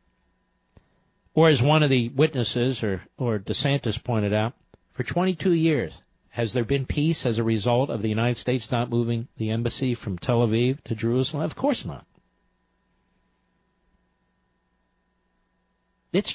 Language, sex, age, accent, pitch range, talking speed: English, male, 60-79, American, 125-195 Hz, 140 wpm